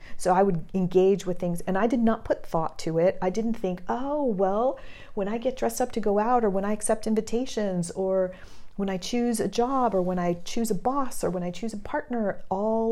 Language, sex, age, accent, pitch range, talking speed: English, female, 40-59, American, 165-210 Hz, 235 wpm